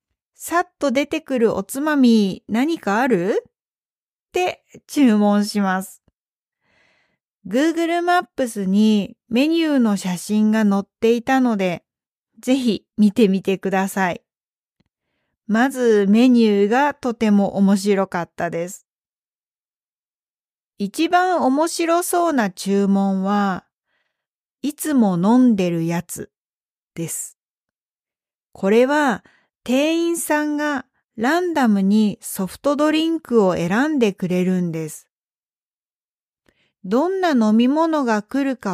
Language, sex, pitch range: Japanese, female, 200-290 Hz